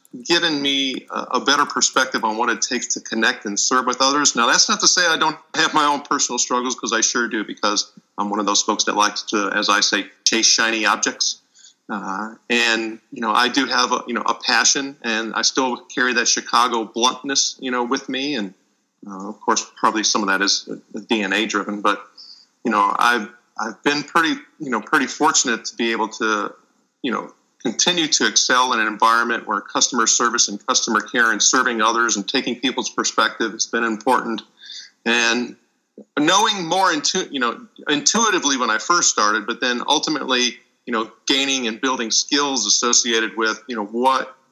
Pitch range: 110-130 Hz